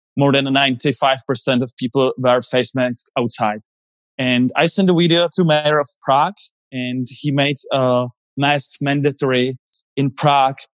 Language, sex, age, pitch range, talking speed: English, male, 20-39, 130-150 Hz, 145 wpm